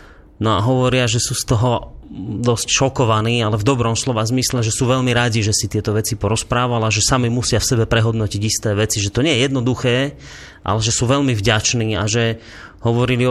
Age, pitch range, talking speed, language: 30-49, 115-155 Hz, 200 wpm, Slovak